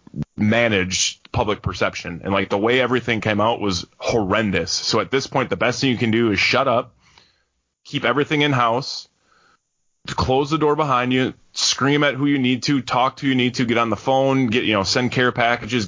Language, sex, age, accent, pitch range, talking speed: English, male, 20-39, American, 105-130 Hz, 210 wpm